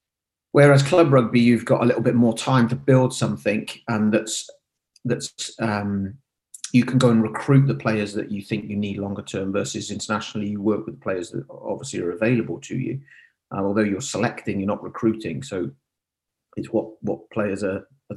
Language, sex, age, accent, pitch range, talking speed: English, male, 30-49, British, 105-120 Hz, 190 wpm